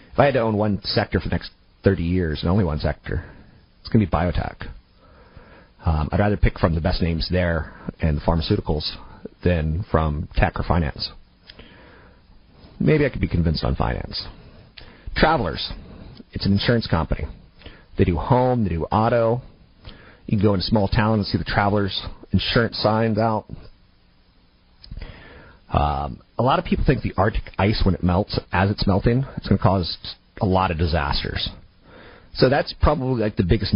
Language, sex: English, male